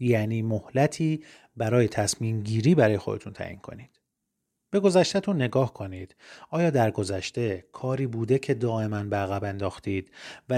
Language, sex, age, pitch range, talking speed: Persian, male, 30-49, 100-130 Hz, 130 wpm